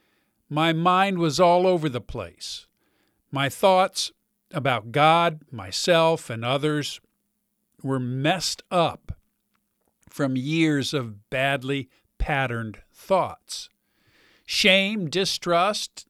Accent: American